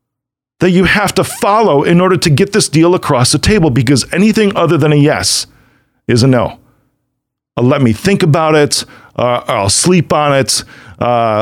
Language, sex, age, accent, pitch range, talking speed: English, male, 40-59, American, 130-170 Hz, 180 wpm